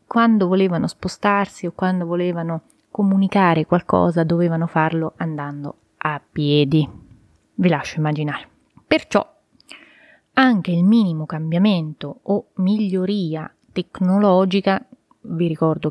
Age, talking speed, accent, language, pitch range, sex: 30-49, 100 wpm, native, Italian, 160-195 Hz, female